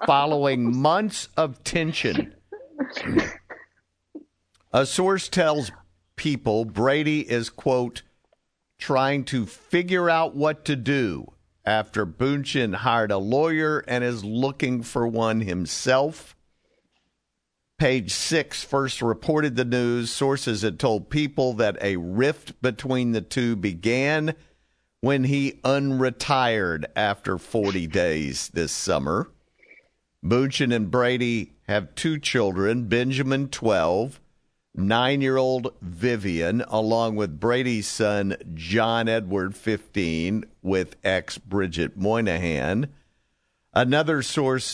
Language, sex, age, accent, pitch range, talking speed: English, male, 50-69, American, 105-135 Hz, 105 wpm